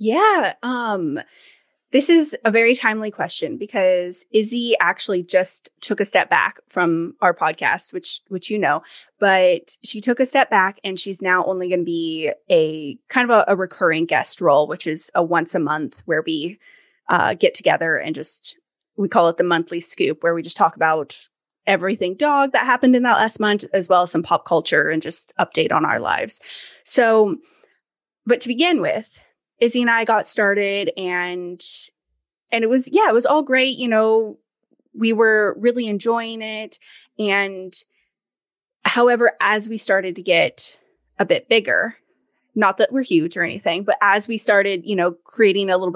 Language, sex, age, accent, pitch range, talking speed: English, female, 20-39, American, 175-240 Hz, 180 wpm